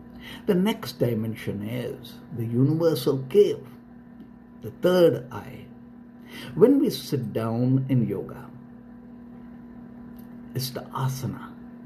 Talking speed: 95 wpm